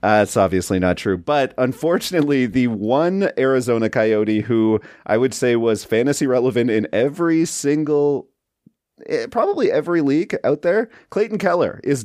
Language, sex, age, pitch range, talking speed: English, male, 30-49, 110-145 Hz, 145 wpm